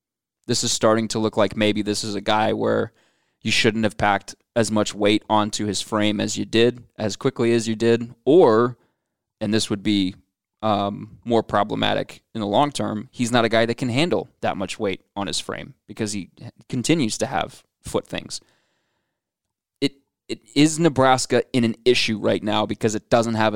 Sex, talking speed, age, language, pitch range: male, 190 wpm, 20-39, English, 105-125 Hz